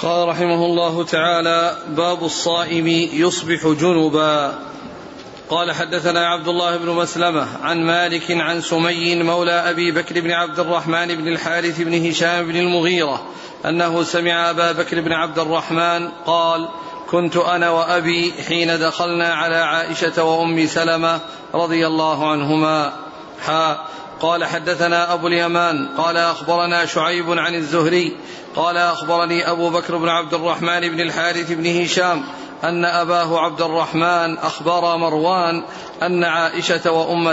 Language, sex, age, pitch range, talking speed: Arabic, male, 40-59, 165-175 Hz, 125 wpm